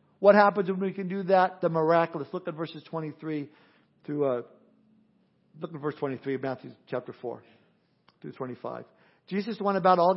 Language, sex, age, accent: English, male, 50-69, American